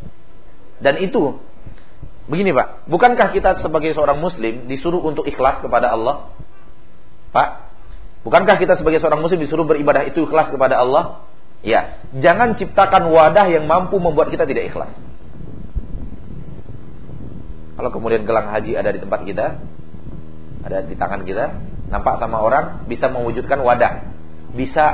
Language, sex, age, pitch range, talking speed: Malay, male, 40-59, 130-185 Hz, 130 wpm